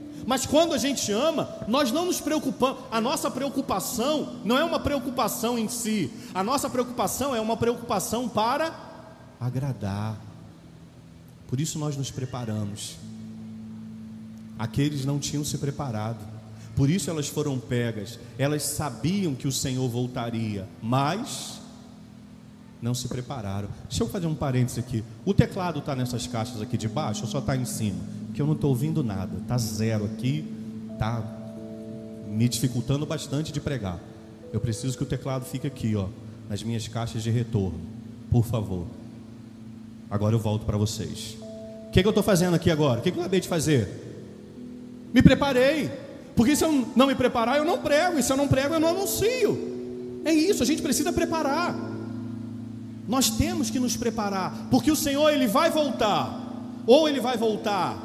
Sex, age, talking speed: male, 40-59, 160 wpm